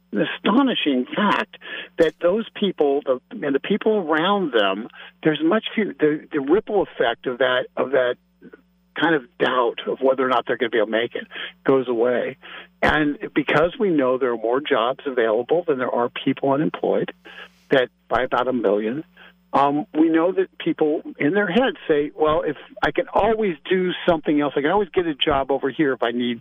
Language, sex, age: English, male, 50-69